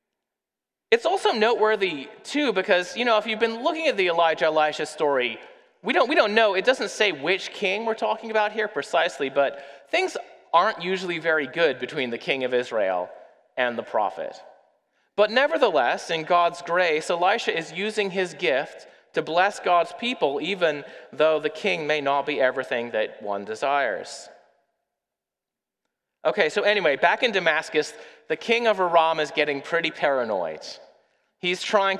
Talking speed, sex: 160 wpm, male